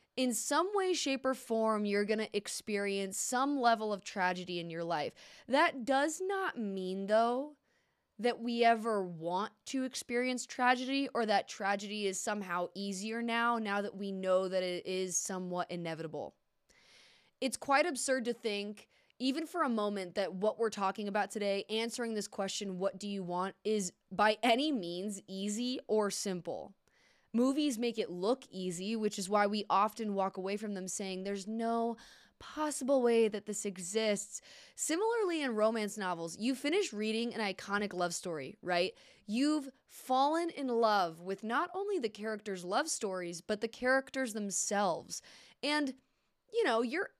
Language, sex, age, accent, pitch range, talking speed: English, female, 20-39, American, 195-260 Hz, 160 wpm